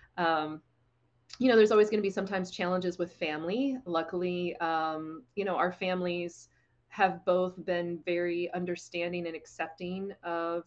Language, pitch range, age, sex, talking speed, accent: English, 160-185 Hz, 30-49, female, 145 wpm, American